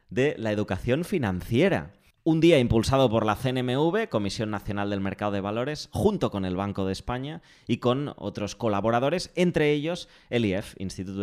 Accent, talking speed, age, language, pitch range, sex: Spanish, 165 wpm, 20-39, Spanish, 100-145 Hz, male